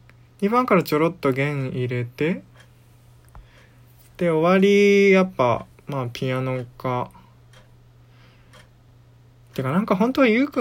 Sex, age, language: male, 20-39, Japanese